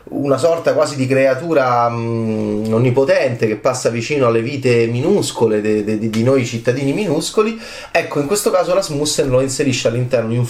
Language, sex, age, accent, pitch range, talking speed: Italian, male, 30-49, native, 120-170 Hz, 170 wpm